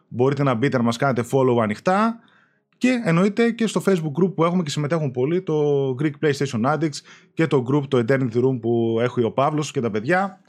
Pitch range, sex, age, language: 135-190 Hz, male, 20-39, Greek